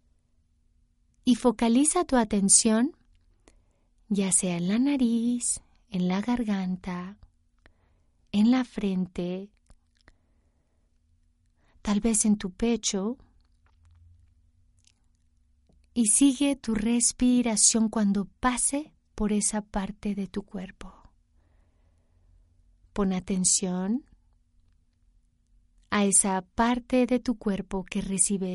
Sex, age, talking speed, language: female, 30-49, 90 wpm, Spanish